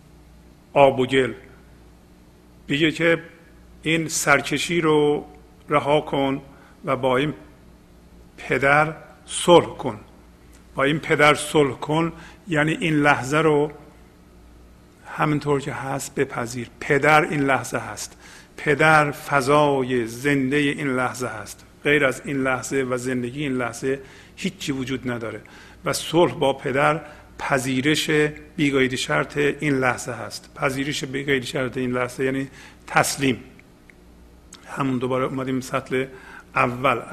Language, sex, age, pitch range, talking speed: Persian, male, 50-69, 125-155 Hz, 115 wpm